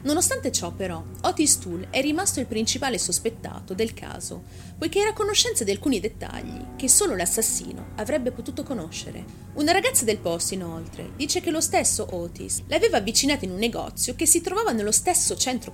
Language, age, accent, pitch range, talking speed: Italian, 30-49, native, 175-280 Hz, 170 wpm